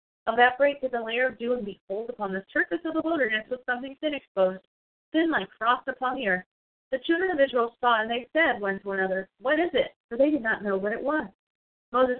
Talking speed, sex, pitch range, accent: 230 wpm, female, 215-280 Hz, American